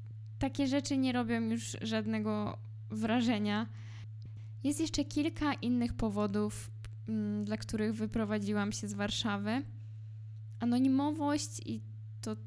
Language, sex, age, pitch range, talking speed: Polish, female, 10-29, 110-135 Hz, 100 wpm